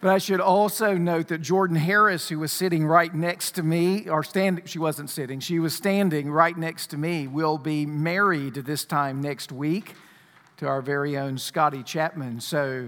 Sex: male